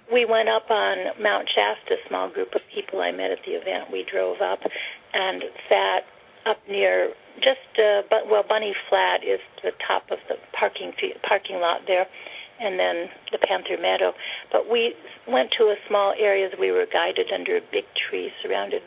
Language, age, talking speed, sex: English, 50-69, 190 wpm, female